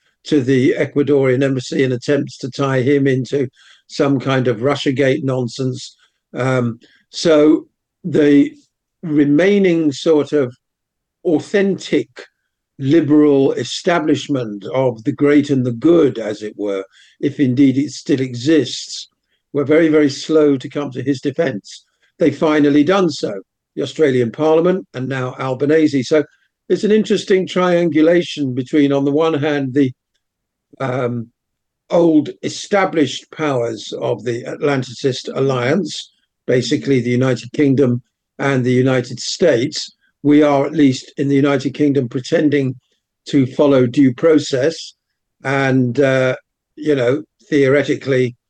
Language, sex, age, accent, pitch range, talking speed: English, male, 50-69, British, 130-150 Hz, 125 wpm